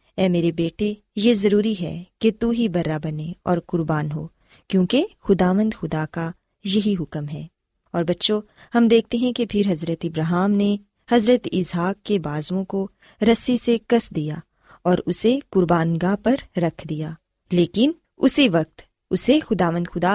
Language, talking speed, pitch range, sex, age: Urdu, 155 wpm, 175-230 Hz, female, 20-39